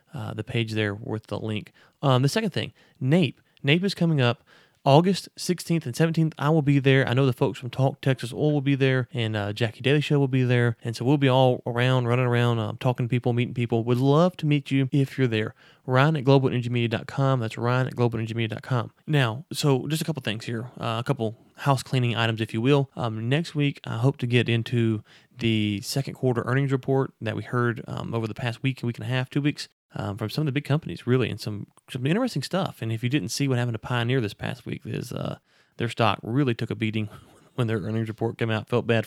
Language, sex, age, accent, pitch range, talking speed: English, male, 30-49, American, 115-140 Hz, 240 wpm